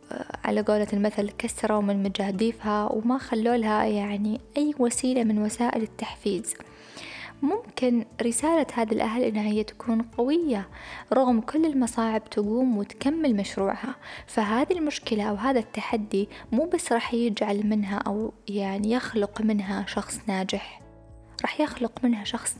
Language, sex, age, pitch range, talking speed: Arabic, female, 10-29, 210-250 Hz, 125 wpm